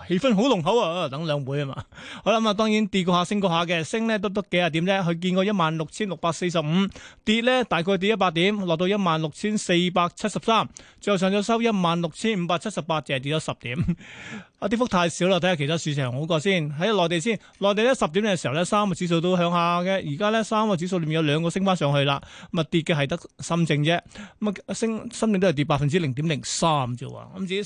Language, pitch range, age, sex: Chinese, 160-200 Hz, 20-39, male